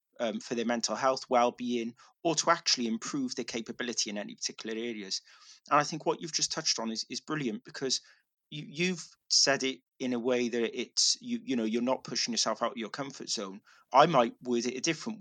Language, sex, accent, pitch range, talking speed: English, male, British, 115-180 Hz, 215 wpm